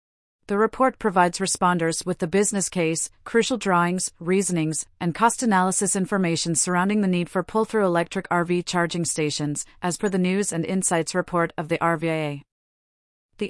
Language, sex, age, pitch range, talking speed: English, female, 40-59, 165-200 Hz, 155 wpm